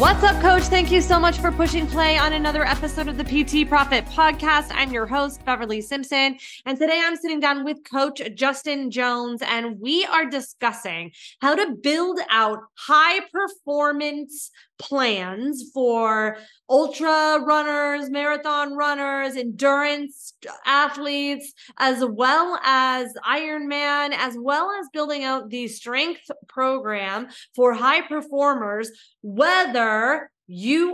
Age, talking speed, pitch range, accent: 20-39, 130 wpm, 245-305 Hz, American